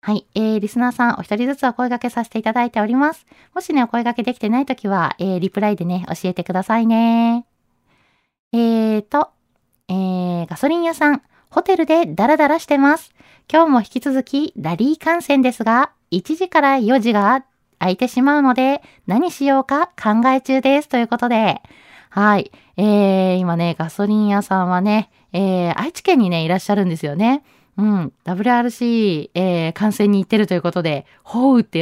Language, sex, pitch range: Japanese, female, 185-270 Hz